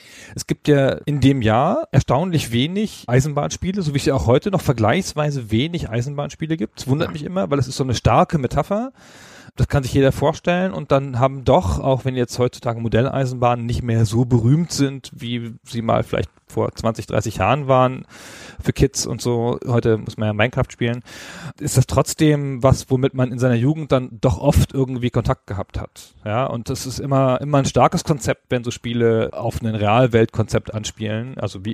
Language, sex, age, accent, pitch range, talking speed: German, male, 40-59, German, 115-145 Hz, 195 wpm